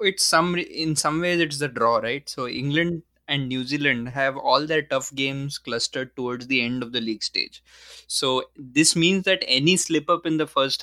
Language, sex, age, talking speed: English, male, 20-39, 205 wpm